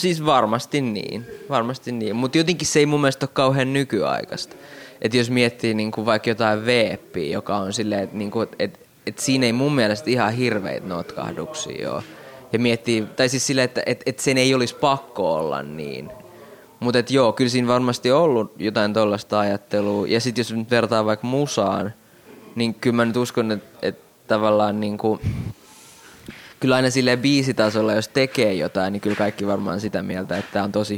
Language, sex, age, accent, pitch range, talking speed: Finnish, male, 20-39, native, 105-125 Hz, 175 wpm